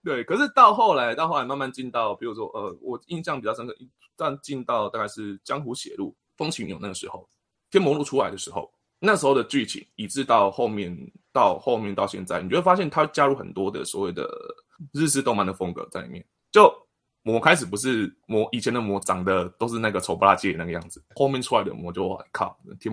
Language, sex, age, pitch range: Chinese, male, 20-39, 100-150 Hz